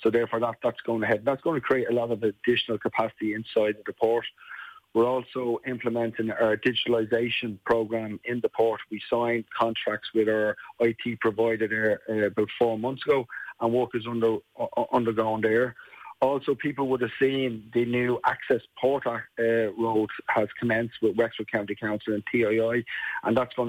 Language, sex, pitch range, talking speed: English, male, 110-120 Hz, 175 wpm